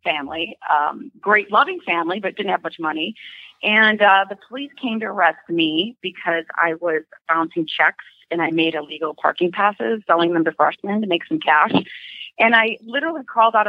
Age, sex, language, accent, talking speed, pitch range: 30-49, female, English, American, 185 wpm, 170-225 Hz